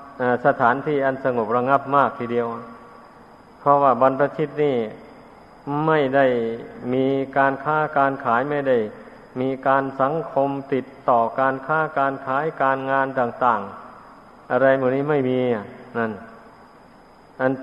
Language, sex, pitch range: Thai, male, 125-140 Hz